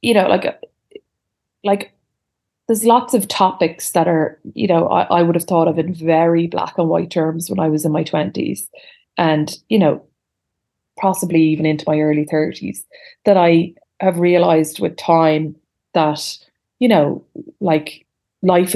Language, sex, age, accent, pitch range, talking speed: English, female, 20-39, Irish, 165-200 Hz, 160 wpm